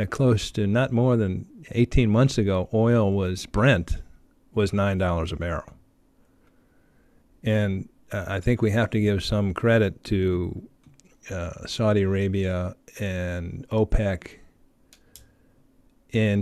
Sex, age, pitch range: male, 40-59, 95-115 Hz